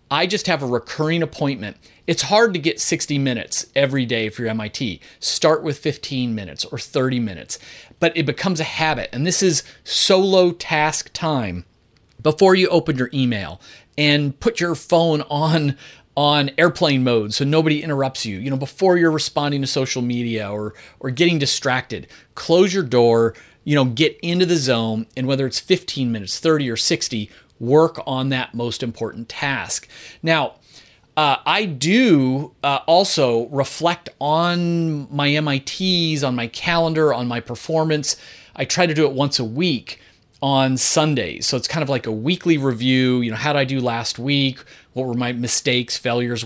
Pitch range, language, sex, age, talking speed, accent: 120-160 Hz, English, male, 30-49, 175 wpm, American